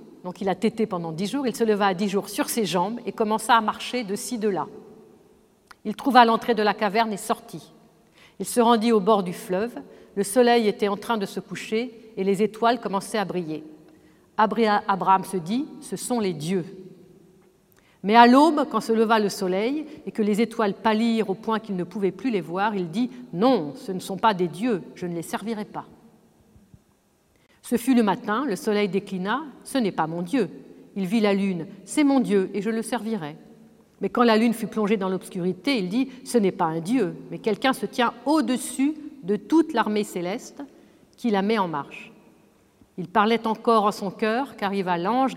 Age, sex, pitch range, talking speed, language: 50-69, female, 195-235 Hz, 205 wpm, French